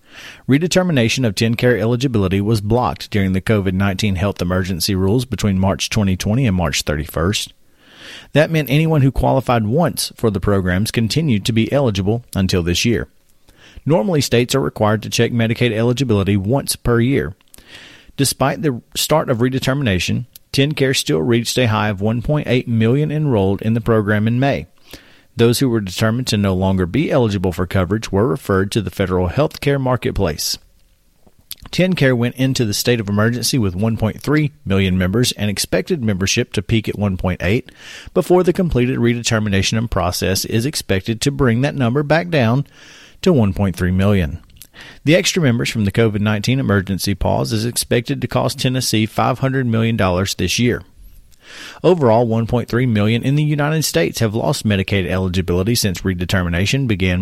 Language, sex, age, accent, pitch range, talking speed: English, male, 40-59, American, 95-125 Hz, 155 wpm